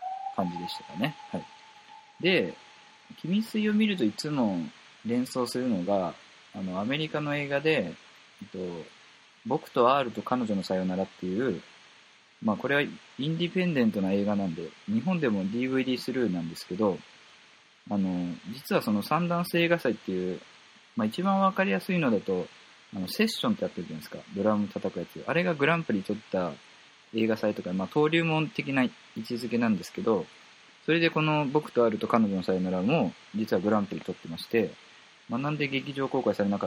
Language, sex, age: Japanese, male, 20-39